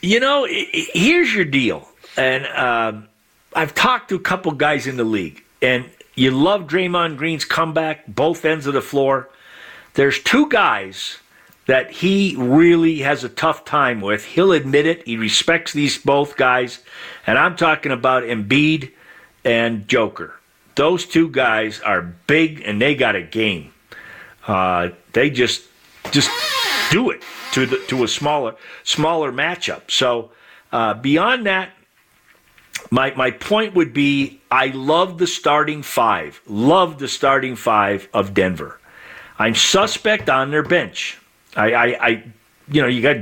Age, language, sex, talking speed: 50-69, English, male, 150 wpm